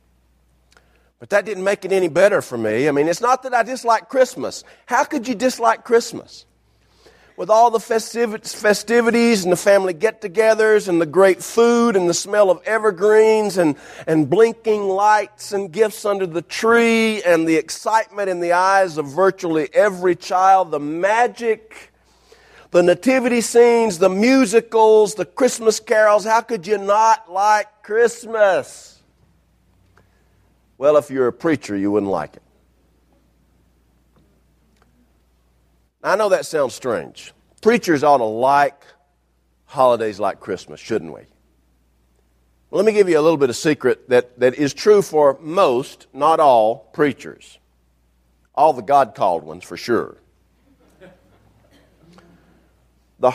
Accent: American